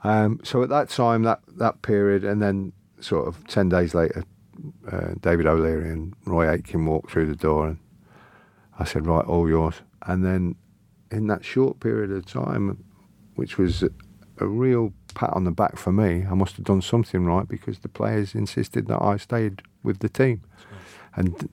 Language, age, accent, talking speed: English, 50-69, British, 185 wpm